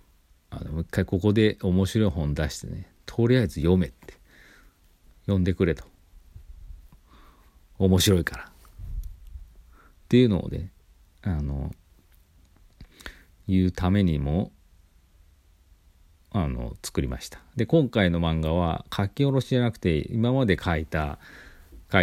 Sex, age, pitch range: male, 40-59, 75-95 Hz